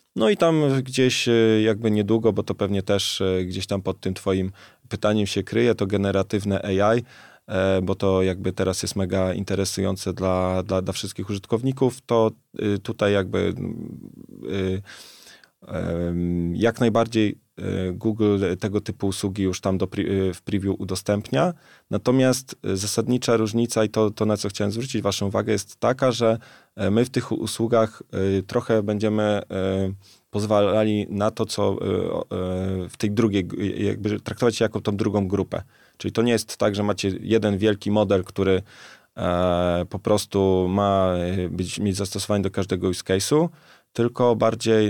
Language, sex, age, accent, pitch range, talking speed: Polish, male, 20-39, native, 95-115 Hz, 145 wpm